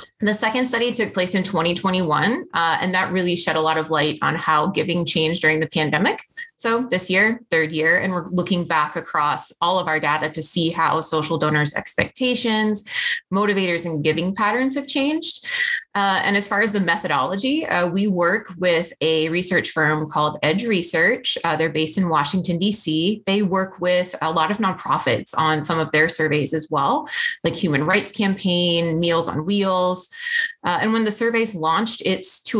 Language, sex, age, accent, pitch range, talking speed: English, female, 20-39, American, 160-210 Hz, 190 wpm